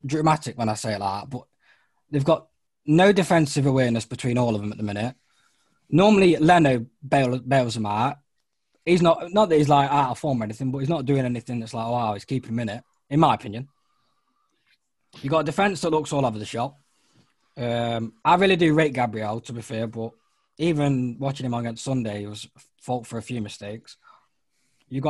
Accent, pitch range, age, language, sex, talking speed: British, 115-145 Hz, 20-39, English, male, 210 wpm